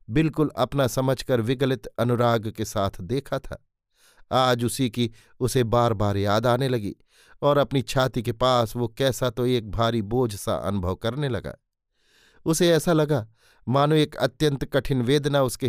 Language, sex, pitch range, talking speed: Hindi, male, 115-140 Hz, 160 wpm